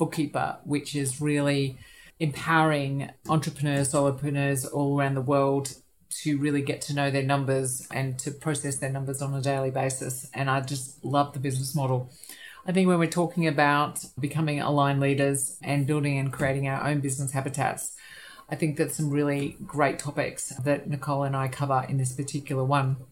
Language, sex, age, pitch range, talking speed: English, female, 30-49, 135-150 Hz, 175 wpm